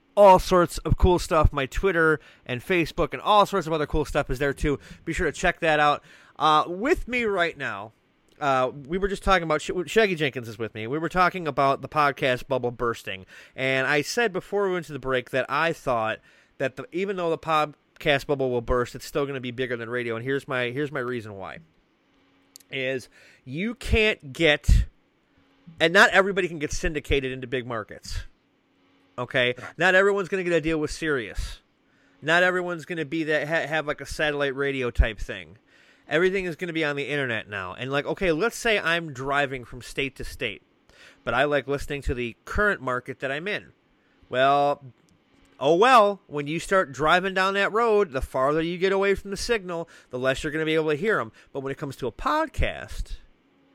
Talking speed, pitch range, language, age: 210 wpm, 130-175 Hz, English, 30-49